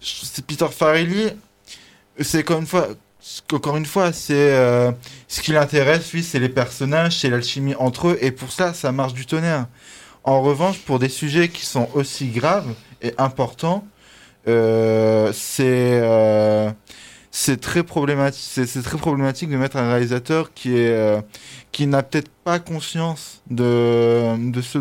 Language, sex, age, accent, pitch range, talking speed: French, male, 20-39, French, 120-150 Hz, 160 wpm